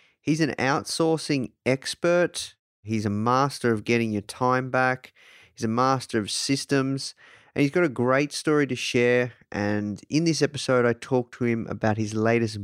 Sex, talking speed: male, 170 wpm